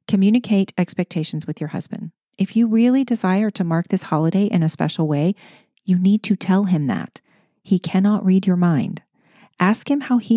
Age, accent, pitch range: 40-59, American, 165-220 Hz